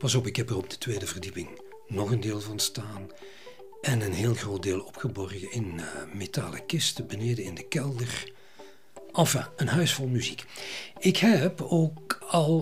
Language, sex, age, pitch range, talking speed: Dutch, male, 50-69, 115-165 Hz, 175 wpm